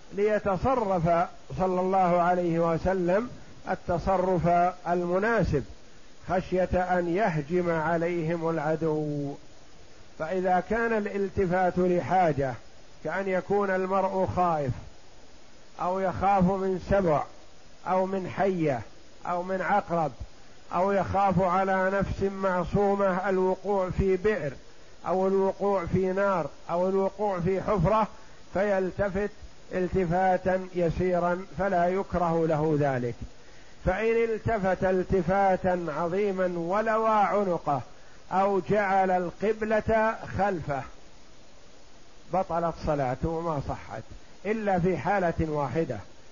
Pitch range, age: 170-195 Hz, 50-69